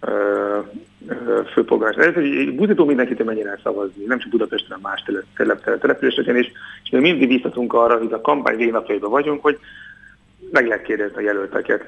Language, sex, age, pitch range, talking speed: Hungarian, male, 40-59, 115-150 Hz, 170 wpm